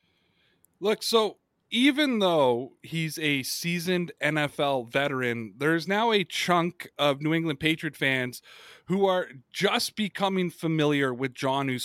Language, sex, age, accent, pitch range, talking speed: English, male, 30-49, American, 160-210 Hz, 125 wpm